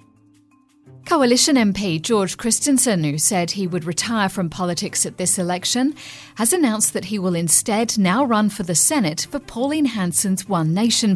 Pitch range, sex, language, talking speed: 170-230 Hz, female, English, 160 wpm